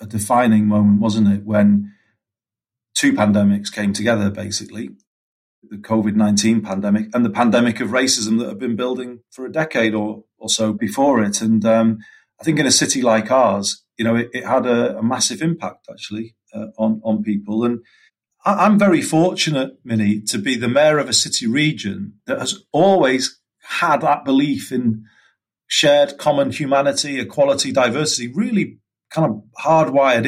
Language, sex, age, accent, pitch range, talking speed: English, male, 40-59, British, 110-165 Hz, 165 wpm